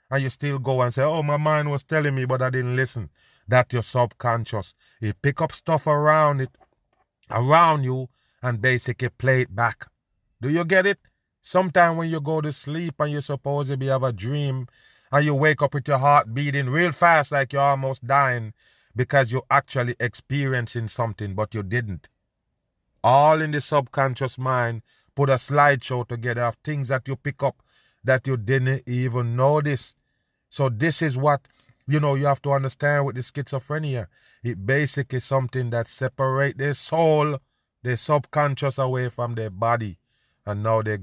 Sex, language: male, English